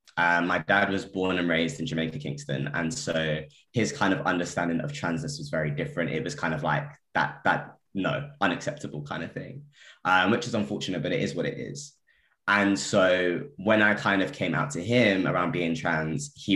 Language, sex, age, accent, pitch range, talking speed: English, male, 20-39, British, 80-105 Hz, 205 wpm